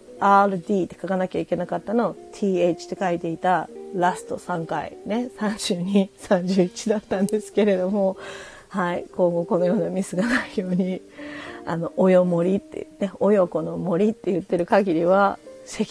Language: Japanese